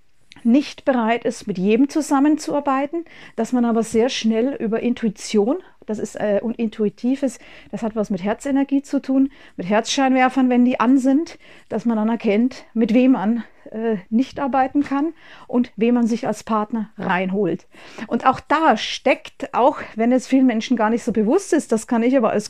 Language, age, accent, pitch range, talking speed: German, 40-59, German, 220-265 Hz, 180 wpm